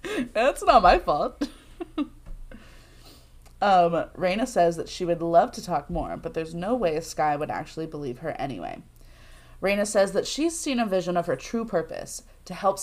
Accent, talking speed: American, 175 wpm